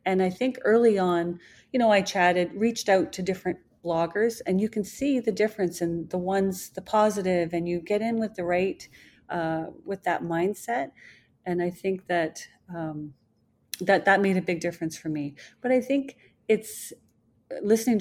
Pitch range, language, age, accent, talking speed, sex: 170-210 Hz, English, 40-59, American, 180 wpm, female